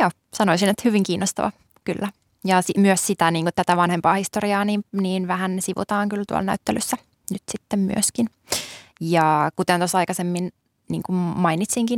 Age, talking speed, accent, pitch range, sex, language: 20-39, 150 wpm, native, 170-205 Hz, female, Finnish